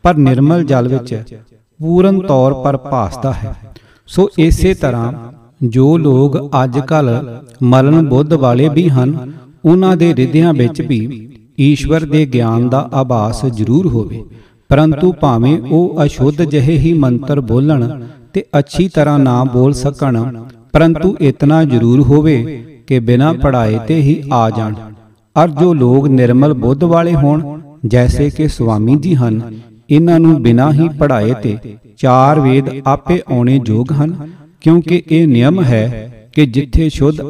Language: Punjabi